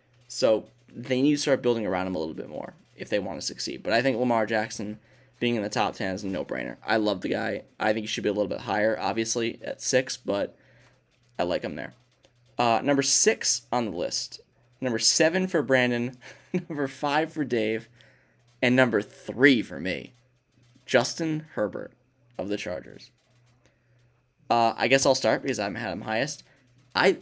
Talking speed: 190 wpm